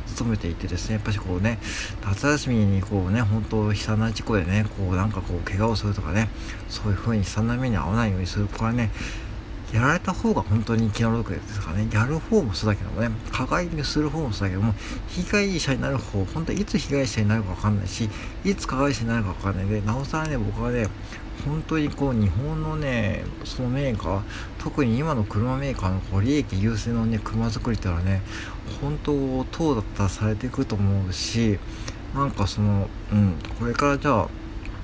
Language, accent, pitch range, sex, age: Japanese, native, 100-120 Hz, male, 60-79